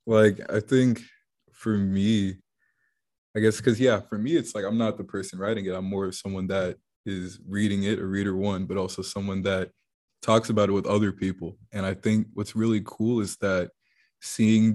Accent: American